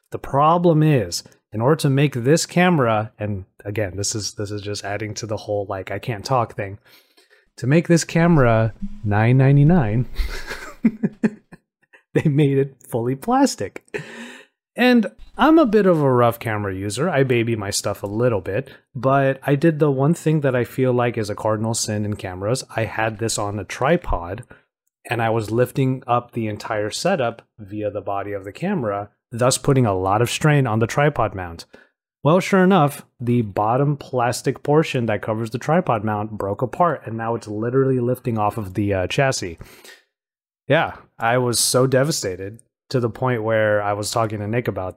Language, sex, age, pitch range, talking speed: English, male, 30-49, 105-135 Hz, 180 wpm